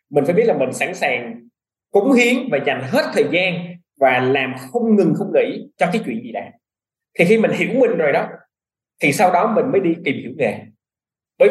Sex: male